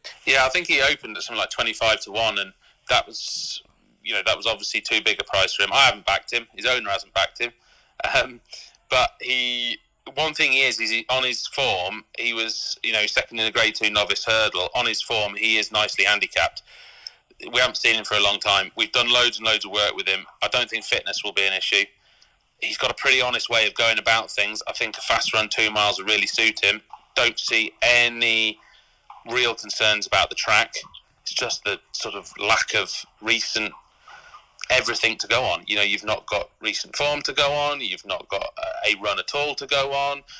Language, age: English, 30-49